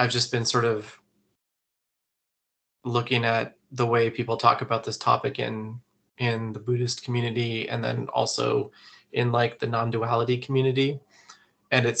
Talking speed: 145 wpm